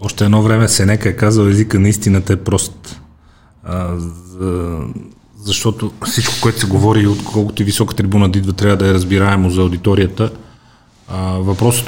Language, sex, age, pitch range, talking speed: Bulgarian, male, 30-49, 95-110 Hz, 150 wpm